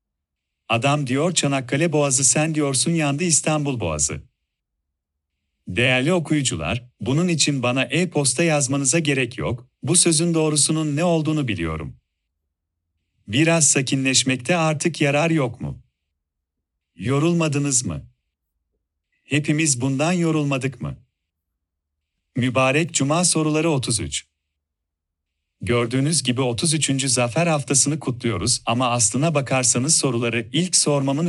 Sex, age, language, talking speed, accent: male, 40-59, Turkish, 100 wpm, native